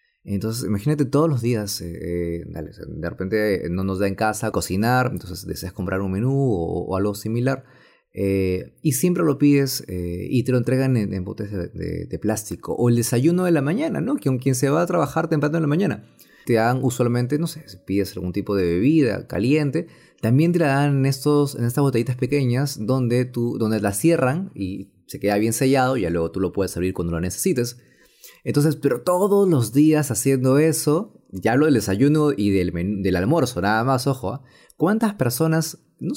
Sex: male